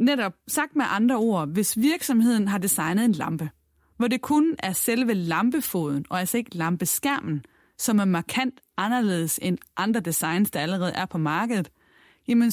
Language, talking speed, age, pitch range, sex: Danish, 165 wpm, 30-49, 175-250 Hz, female